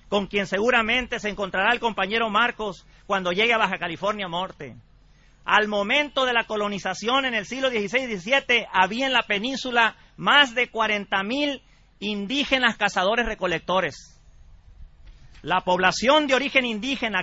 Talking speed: 145 wpm